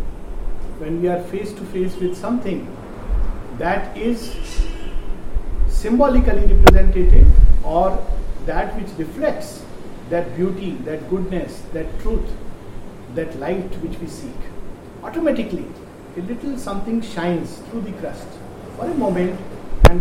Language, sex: English, male